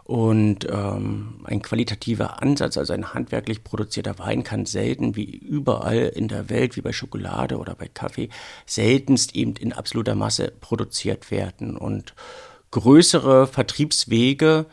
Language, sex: German, male